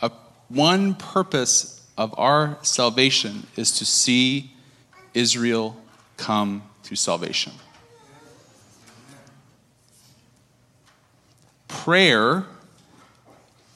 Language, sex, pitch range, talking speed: English, male, 110-140 Hz, 55 wpm